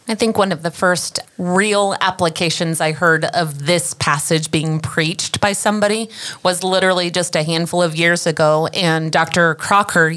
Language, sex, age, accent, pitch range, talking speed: English, female, 30-49, American, 165-195 Hz, 165 wpm